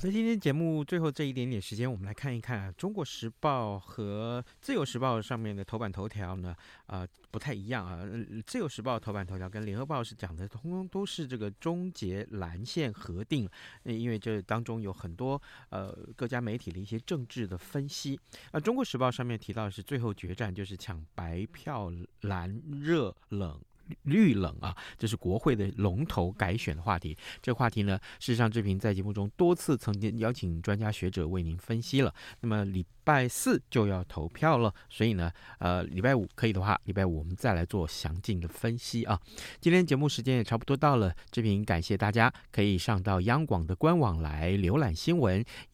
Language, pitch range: Chinese, 95-130 Hz